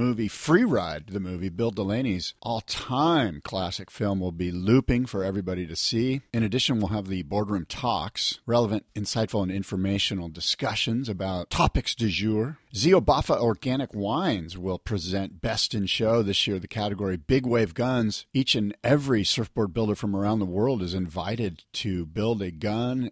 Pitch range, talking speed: 95-115 Hz, 165 wpm